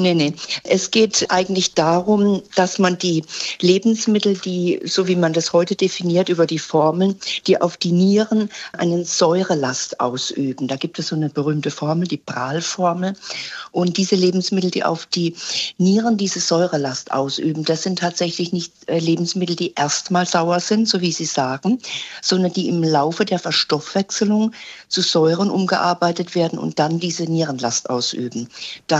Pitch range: 155-185 Hz